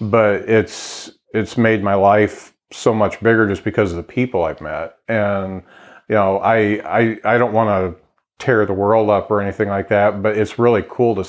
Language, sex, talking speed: English, male, 200 wpm